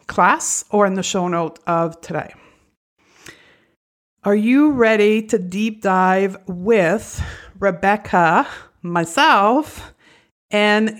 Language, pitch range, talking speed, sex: English, 185-240 Hz, 100 wpm, female